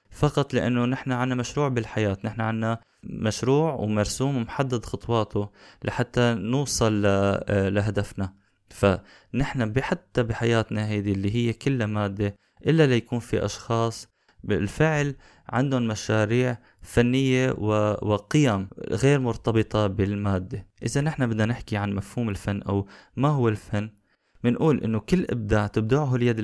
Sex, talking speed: male, 120 wpm